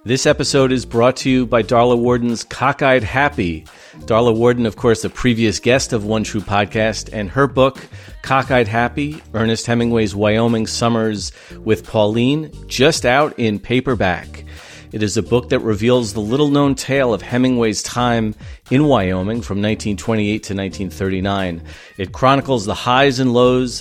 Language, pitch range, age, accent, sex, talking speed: English, 100-125 Hz, 40-59, American, male, 155 wpm